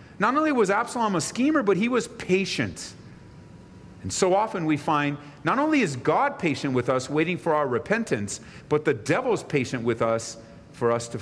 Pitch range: 105-150 Hz